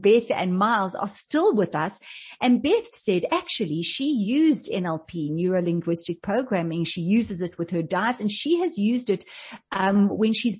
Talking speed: 170 wpm